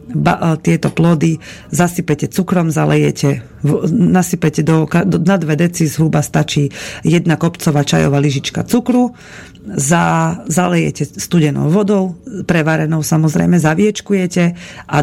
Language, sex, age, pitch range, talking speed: Slovak, female, 40-59, 145-180 Hz, 105 wpm